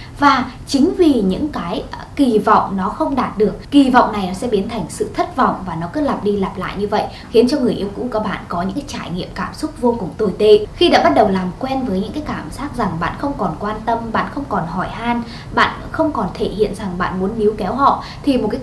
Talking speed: 270 wpm